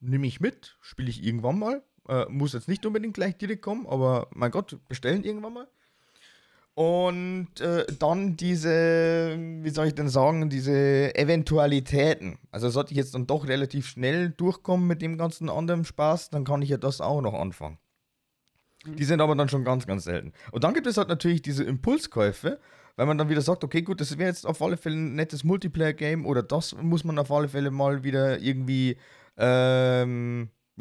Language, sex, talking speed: German, male, 190 wpm